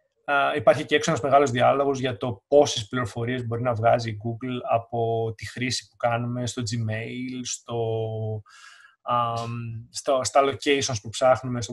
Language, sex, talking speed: Greek, male, 140 wpm